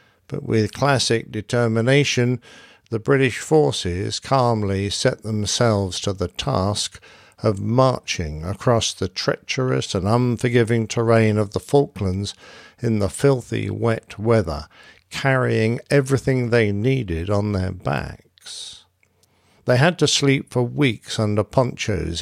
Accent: British